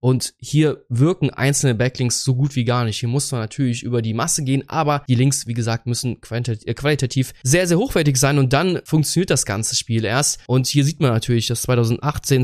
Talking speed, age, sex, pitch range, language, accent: 205 wpm, 20-39, male, 125-150 Hz, German, German